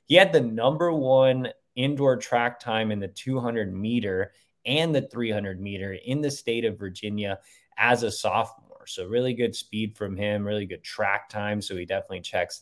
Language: English